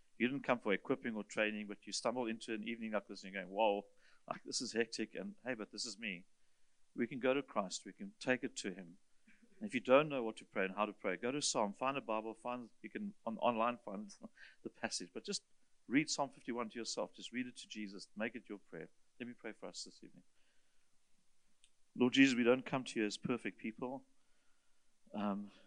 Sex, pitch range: male, 100-125 Hz